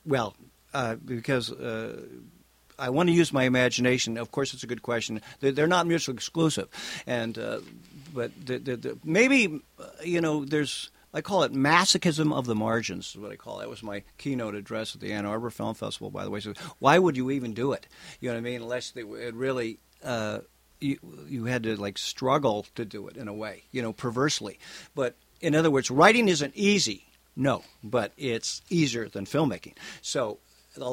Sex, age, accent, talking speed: male, 50-69, American, 210 wpm